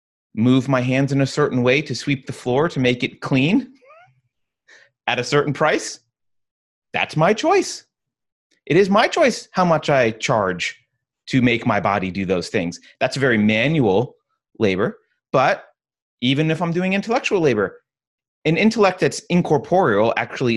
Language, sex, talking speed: English, male, 155 wpm